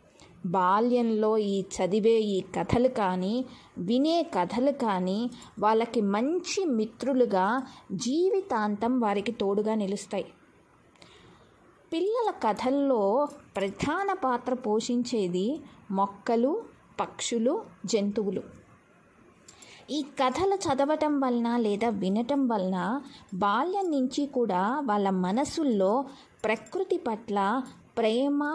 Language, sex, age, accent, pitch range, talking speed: Telugu, female, 20-39, native, 210-270 Hz, 80 wpm